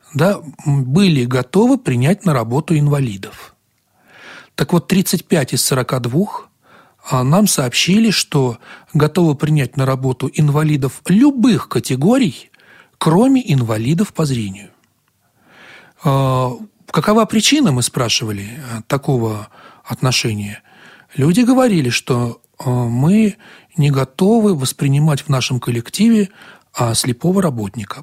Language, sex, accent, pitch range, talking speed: Russian, male, native, 130-190 Hz, 90 wpm